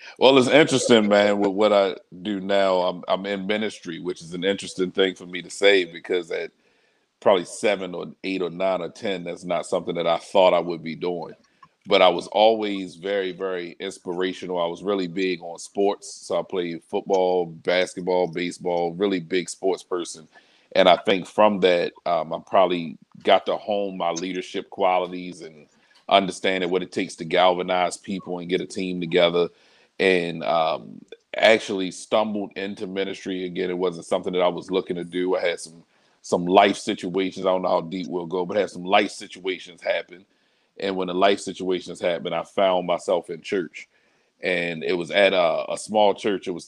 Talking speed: 190 wpm